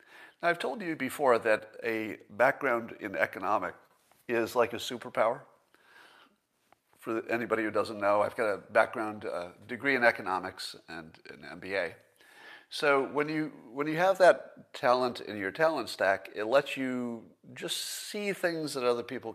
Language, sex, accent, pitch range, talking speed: English, male, American, 110-145 Hz, 160 wpm